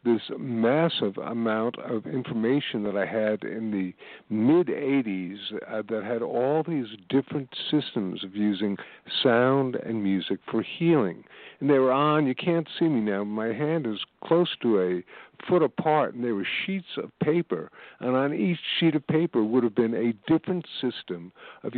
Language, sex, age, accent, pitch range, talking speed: English, male, 50-69, American, 110-150 Hz, 165 wpm